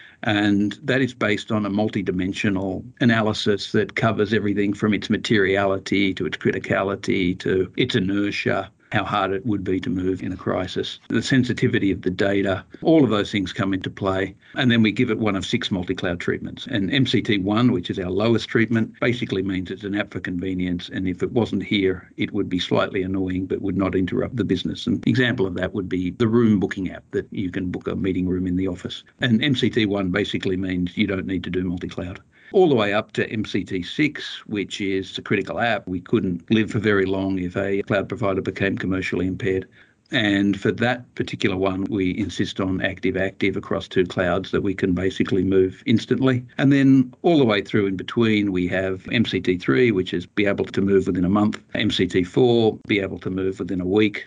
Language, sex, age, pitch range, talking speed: English, male, 60-79, 95-110 Hz, 200 wpm